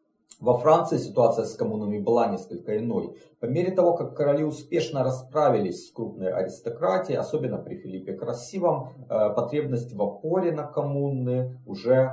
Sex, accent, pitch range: male, native, 110-150 Hz